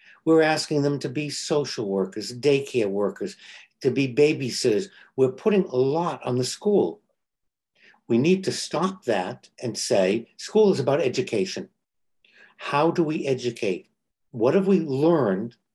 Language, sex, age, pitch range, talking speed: English, male, 60-79, 125-175 Hz, 145 wpm